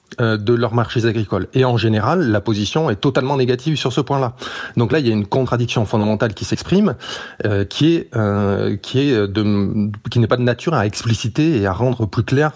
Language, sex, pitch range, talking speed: French, male, 105-130 Hz, 210 wpm